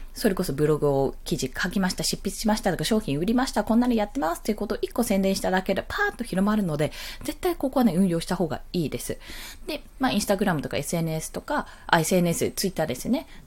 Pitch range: 170-245 Hz